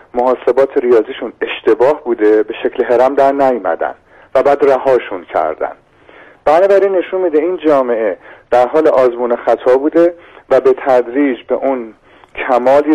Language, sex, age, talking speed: Persian, male, 40-59, 135 wpm